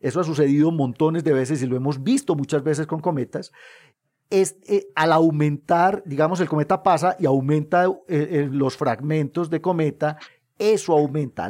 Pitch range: 135-165 Hz